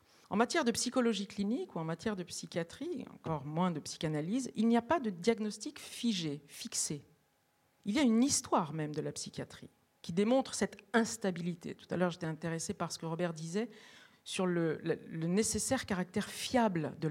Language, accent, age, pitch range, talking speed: French, French, 50-69, 170-230 Hz, 185 wpm